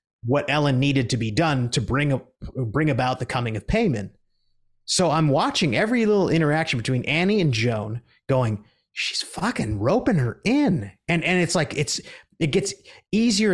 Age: 30-49